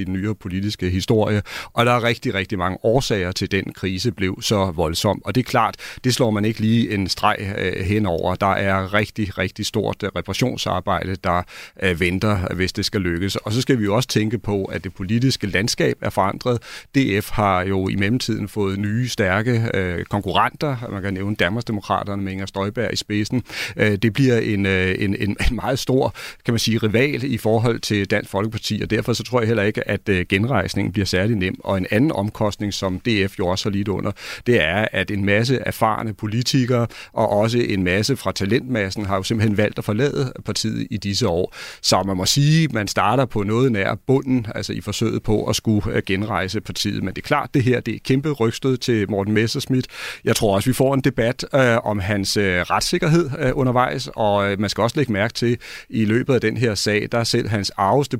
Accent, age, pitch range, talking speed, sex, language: native, 40-59, 100-120 Hz, 205 wpm, male, Danish